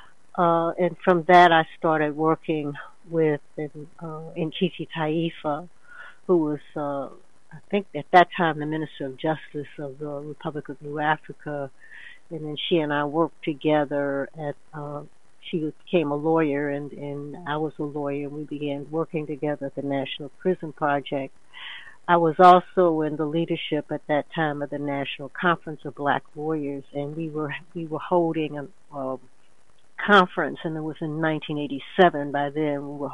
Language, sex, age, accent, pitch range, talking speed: English, female, 60-79, American, 145-165 Hz, 165 wpm